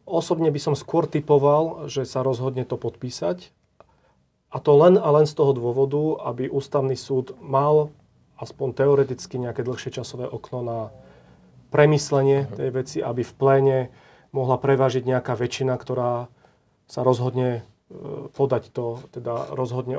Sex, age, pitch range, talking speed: male, 40-59, 125-145 Hz, 140 wpm